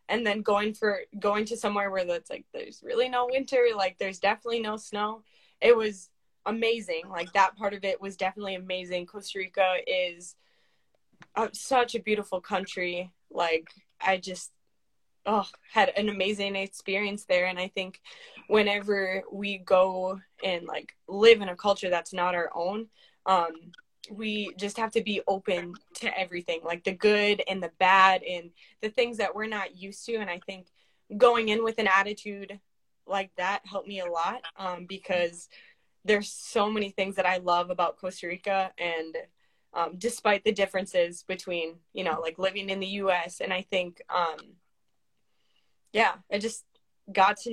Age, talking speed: 20-39, 170 wpm